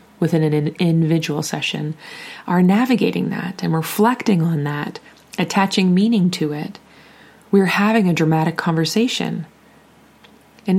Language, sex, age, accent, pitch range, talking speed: English, female, 20-39, American, 155-190 Hz, 115 wpm